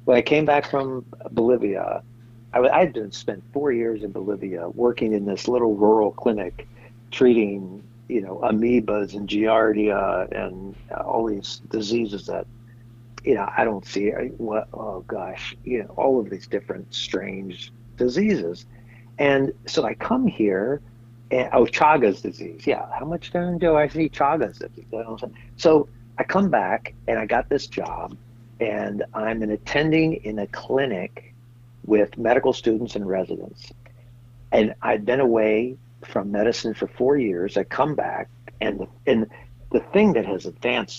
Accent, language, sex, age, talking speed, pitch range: American, English, male, 60-79, 165 wpm, 105-120 Hz